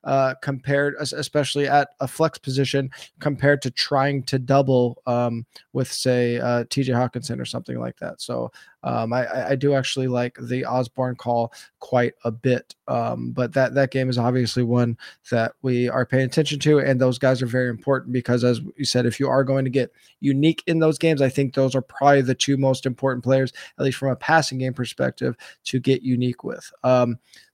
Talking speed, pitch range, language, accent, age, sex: 200 wpm, 125-145 Hz, English, American, 20-39, male